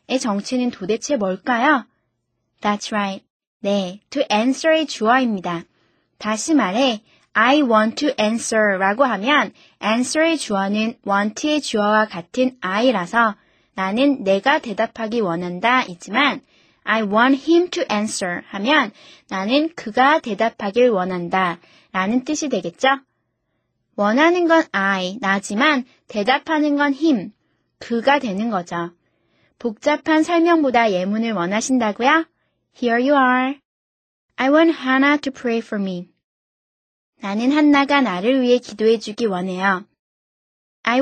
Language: Korean